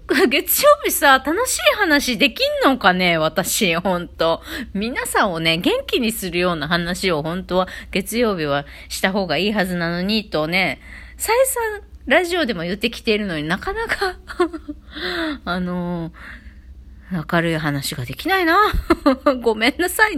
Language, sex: Japanese, female